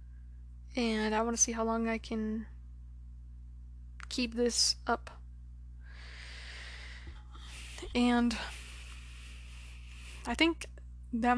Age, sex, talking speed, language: 20-39, female, 85 wpm, English